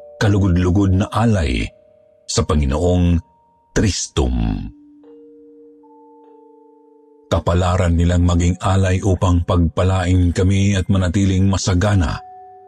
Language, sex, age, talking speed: Filipino, male, 50-69, 75 wpm